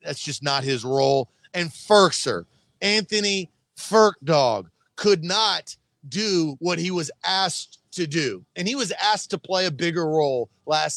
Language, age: English, 40-59